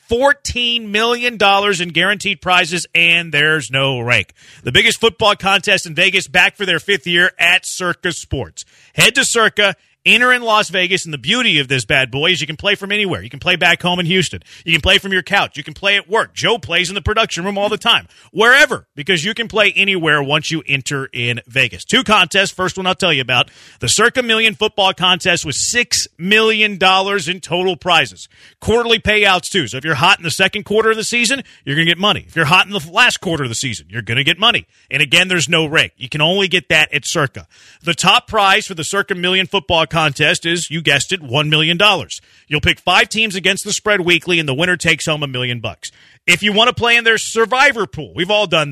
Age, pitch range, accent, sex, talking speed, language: 40-59, 155-205 Hz, American, male, 235 wpm, English